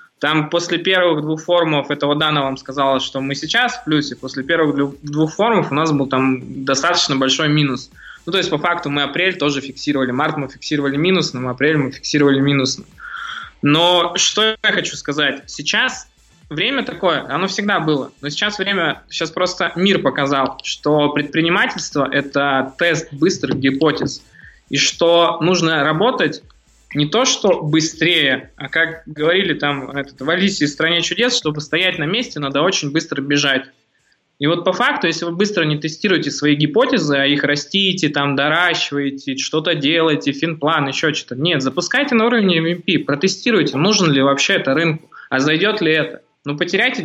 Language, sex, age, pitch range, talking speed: Russian, male, 20-39, 140-175 Hz, 170 wpm